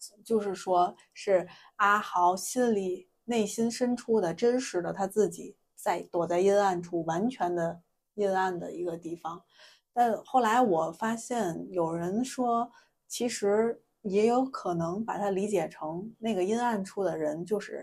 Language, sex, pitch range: Chinese, female, 175-220 Hz